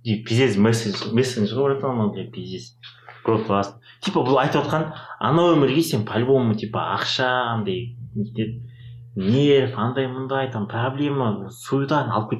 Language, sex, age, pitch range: Russian, male, 30-49, 110-135 Hz